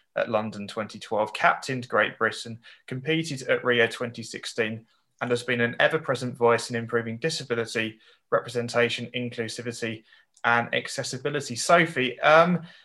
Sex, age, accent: male, 20-39, British